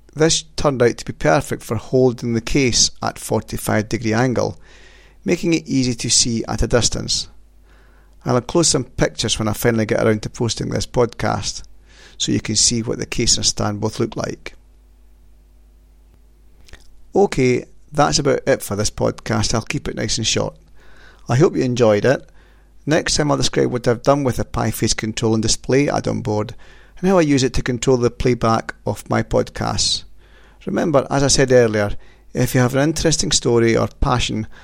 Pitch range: 105-130 Hz